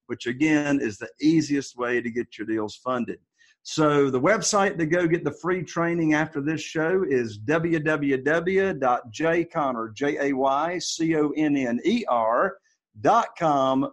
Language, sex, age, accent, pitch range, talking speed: English, male, 50-69, American, 135-185 Hz, 110 wpm